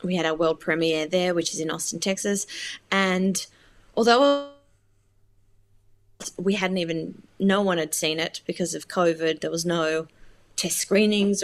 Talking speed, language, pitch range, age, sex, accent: 150 wpm, English, 180-240 Hz, 20-39, female, Australian